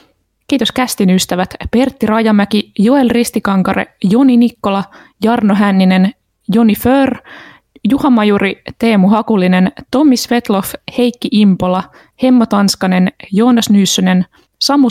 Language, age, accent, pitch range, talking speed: Finnish, 20-39, native, 190-240 Hz, 100 wpm